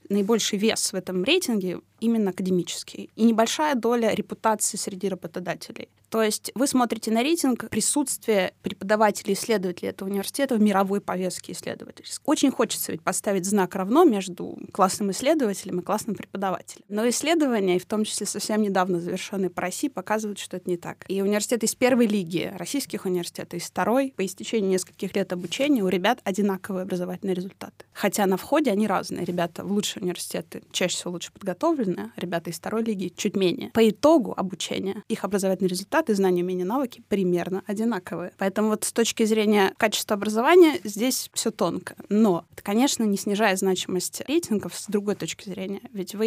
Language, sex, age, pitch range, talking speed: Russian, female, 20-39, 185-225 Hz, 165 wpm